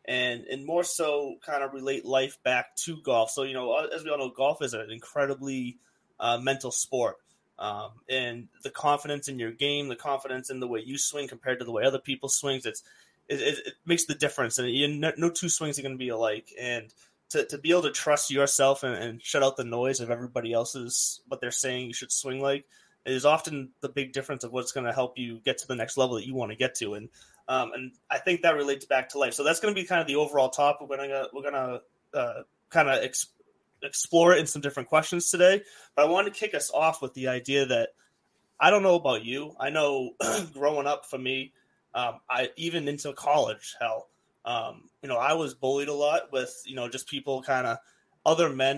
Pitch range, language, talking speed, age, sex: 130-150 Hz, English, 230 wpm, 20-39, male